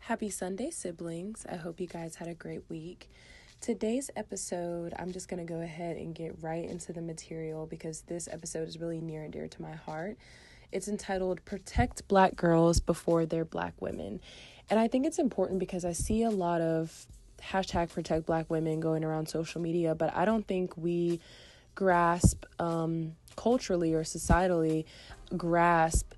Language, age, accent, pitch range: English, 20-39, American, 160-180 Hz